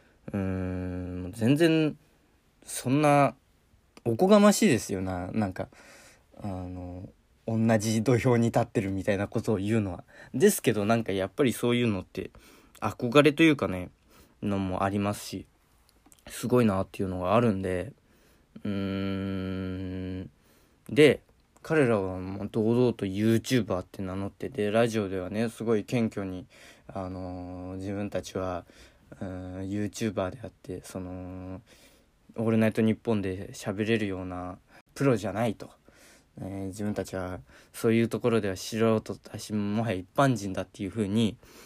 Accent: native